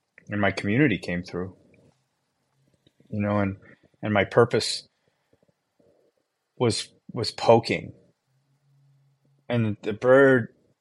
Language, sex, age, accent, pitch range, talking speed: English, male, 30-49, American, 95-115 Hz, 95 wpm